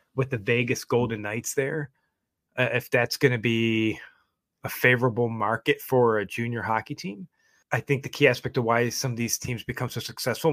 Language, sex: English, male